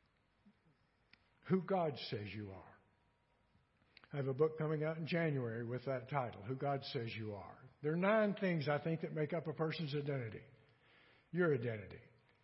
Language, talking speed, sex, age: English, 170 wpm, male, 60-79